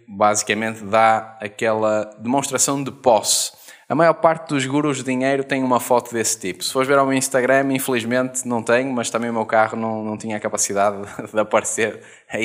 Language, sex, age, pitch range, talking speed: Portuguese, male, 20-39, 110-140 Hz, 195 wpm